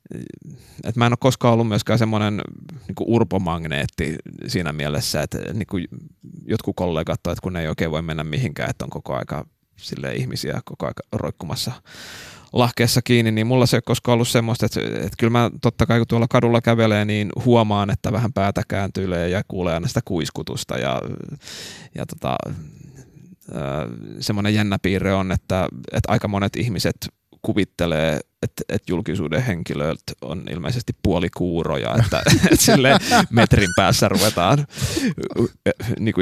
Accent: native